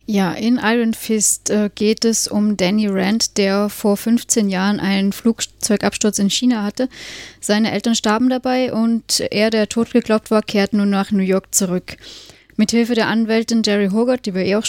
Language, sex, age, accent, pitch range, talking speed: German, female, 20-39, German, 185-215 Hz, 170 wpm